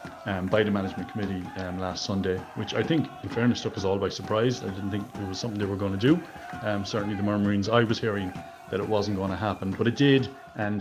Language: English